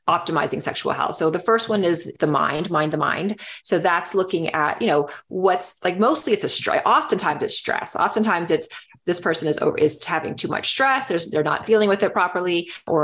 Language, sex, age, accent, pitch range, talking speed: English, female, 30-49, American, 155-195 Hz, 205 wpm